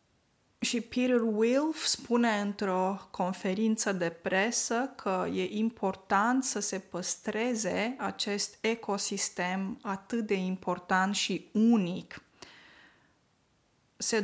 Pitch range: 185-230 Hz